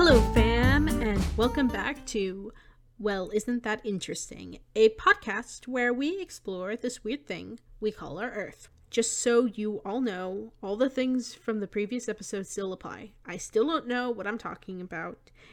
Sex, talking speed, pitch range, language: female, 170 wpm, 190-245 Hz, English